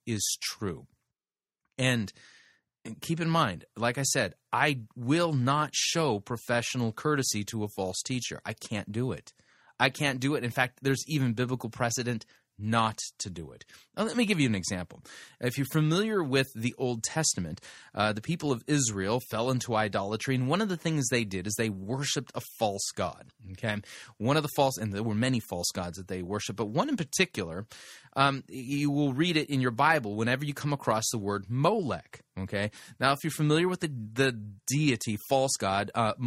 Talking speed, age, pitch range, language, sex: 195 wpm, 30-49, 110-140 Hz, English, male